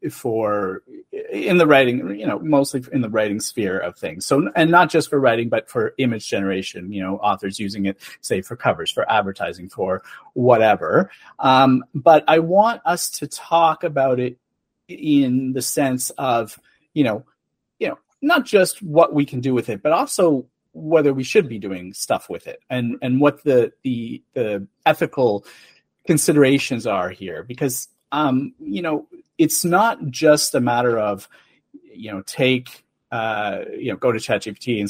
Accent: American